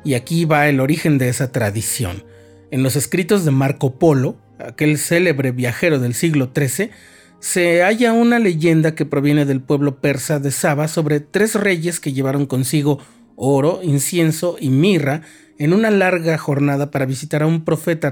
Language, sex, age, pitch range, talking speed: Spanish, male, 40-59, 135-175 Hz, 165 wpm